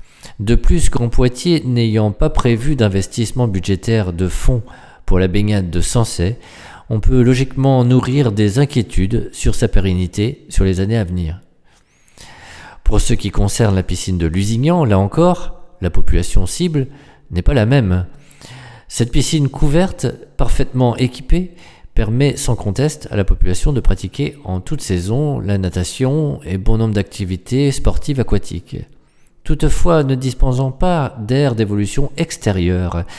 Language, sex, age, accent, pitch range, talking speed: French, male, 40-59, French, 100-135 Hz, 140 wpm